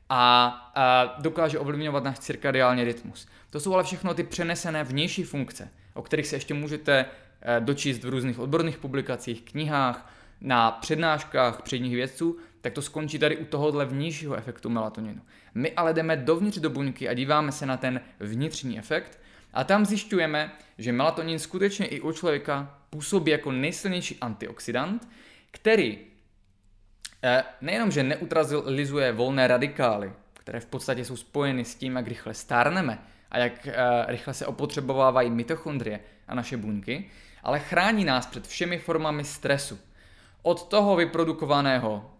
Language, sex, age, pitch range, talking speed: Czech, male, 20-39, 125-160 Hz, 140 wpm